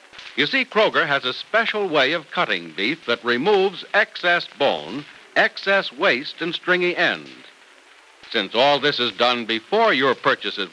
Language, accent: English, American